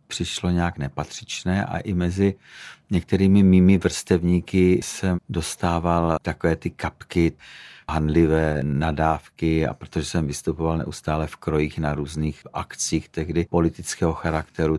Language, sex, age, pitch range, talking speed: Czech, male, 50-69, 80-95 Hz, 120 wpm